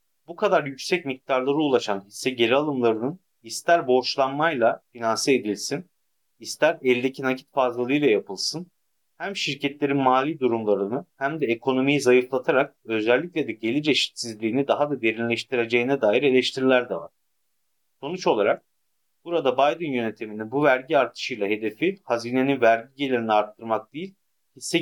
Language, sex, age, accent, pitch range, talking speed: Turkish, male, 40-59, native, 115-155 Hz, 125 wpm